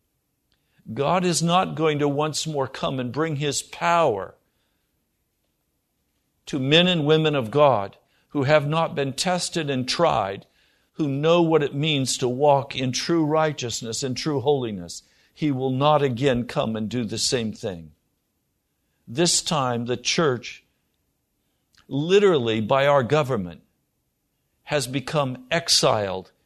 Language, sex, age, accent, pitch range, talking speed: English, male, 60-79, American, 130-165 Hz, 135 wpm